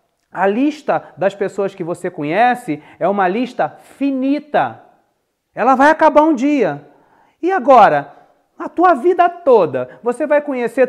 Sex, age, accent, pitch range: male, 40-59, Brazilian, 170-245 Hz